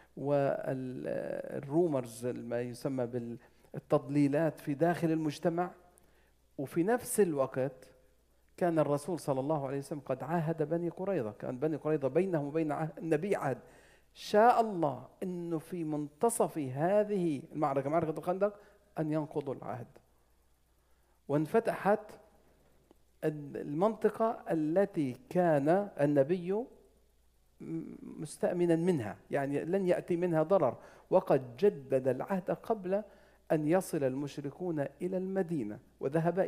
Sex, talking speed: male, 100 wpm